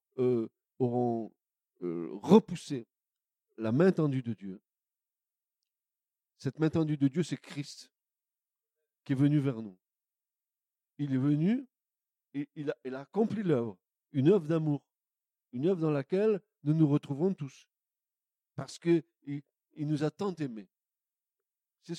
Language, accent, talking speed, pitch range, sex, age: French, French, 135 wpm, 135-195 Hz, male, 50-69